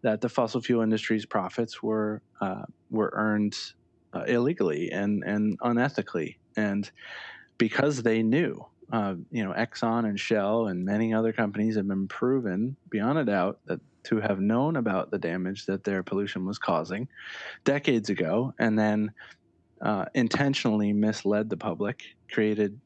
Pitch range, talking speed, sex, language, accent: 100-115 Hz, 150 wpm, male, English, American